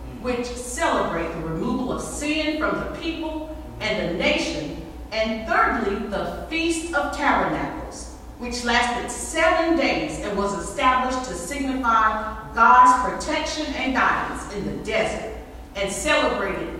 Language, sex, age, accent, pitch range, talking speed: English, female, 40-59, American, 220-285 Hz, 130 wpm